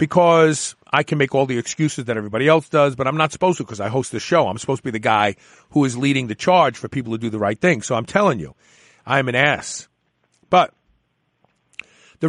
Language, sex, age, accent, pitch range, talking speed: English, male, 50-69, American, 130-170 Hz, 240 wpm